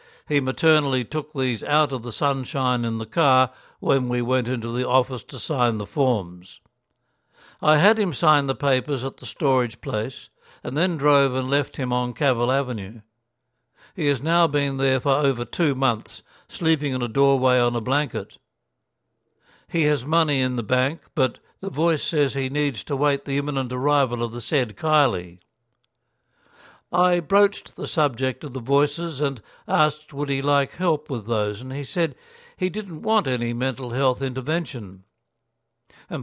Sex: male